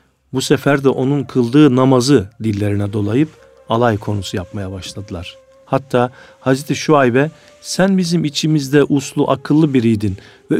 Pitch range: 105-145 Hz